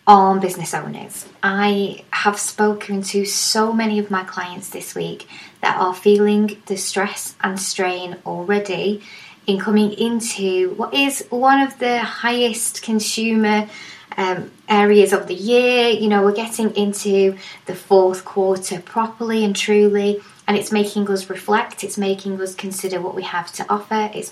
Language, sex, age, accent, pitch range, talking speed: English, female, 20-39, British, 185-215 Hz, 155 wpm